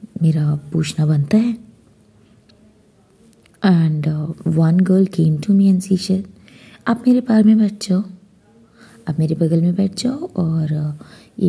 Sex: female